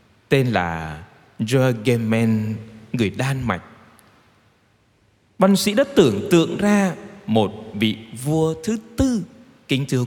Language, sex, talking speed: Vietnamese, male, 120 wpm